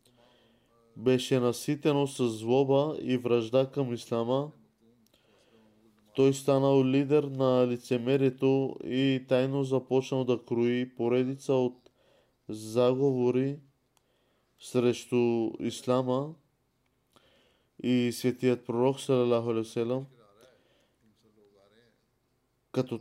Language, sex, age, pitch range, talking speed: Bulgarian, male, 20-39, 120-135 Hz, 75 wpm